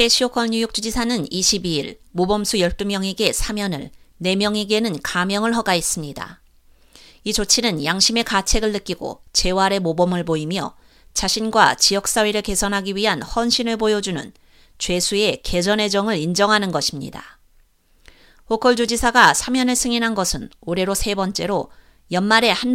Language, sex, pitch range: Korean, female, 190-235 Hz